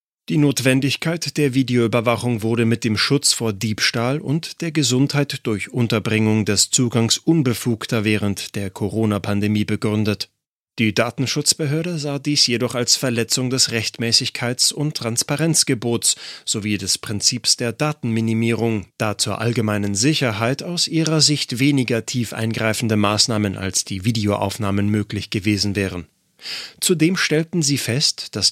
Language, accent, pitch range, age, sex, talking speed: German, German, 110-140 Hz, 30-49, male, 125 wpm